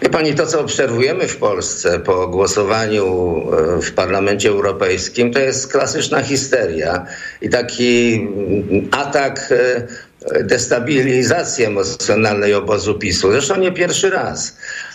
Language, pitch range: Polish, 105-140 Hz